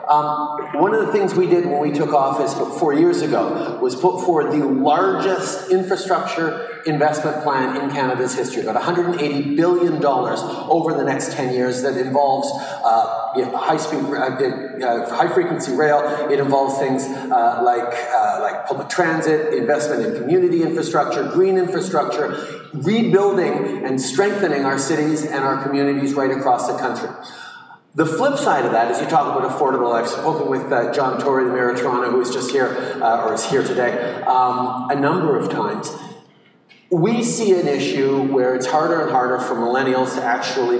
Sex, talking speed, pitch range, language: male, 175 wpm, 130-165 Hz, English